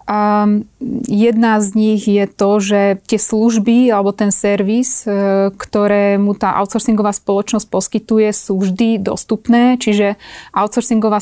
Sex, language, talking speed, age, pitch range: female, Slovak, 120 wpm, 30-49, 195-220 Hz